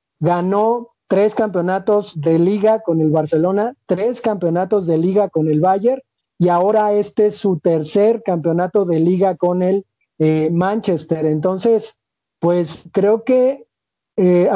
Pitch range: 165-205 Hz